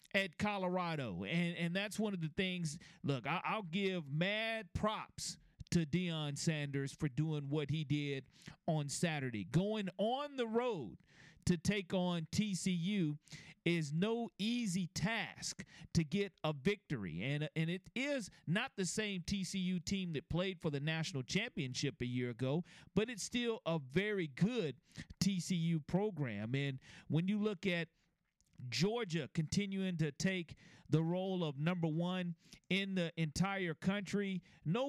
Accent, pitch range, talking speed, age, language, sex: American, 155-190 Hz, 145 wpm, 40-59, English, male